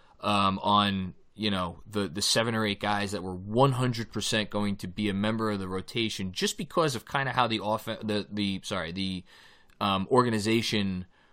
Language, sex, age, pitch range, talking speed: English, male, 20-39, 100-125 Hz, 185 wpm